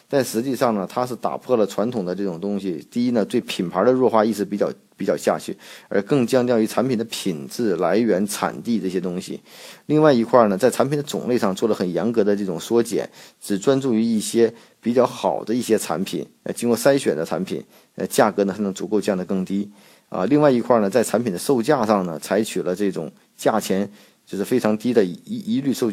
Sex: male